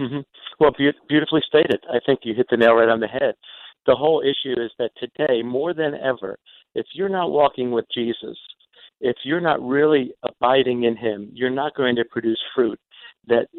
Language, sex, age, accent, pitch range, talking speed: English, male, 50-69, American, 120-145 Hz, 195 wpm